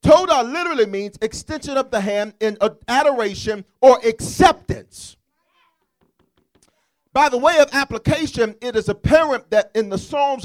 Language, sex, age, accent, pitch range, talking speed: English, male, 40-59, American, 205-305 Hz, 130 wpm